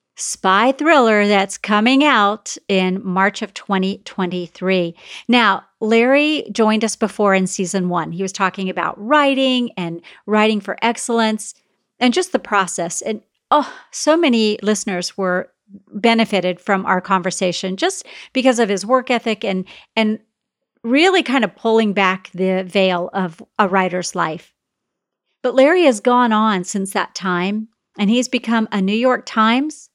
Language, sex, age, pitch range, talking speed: English, female, 40-59, 195-250 Hz, 150 wpm